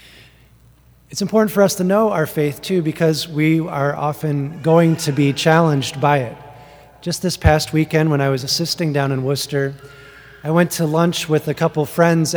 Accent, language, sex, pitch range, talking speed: American, English, male, 140-165 Hz, 185 wpm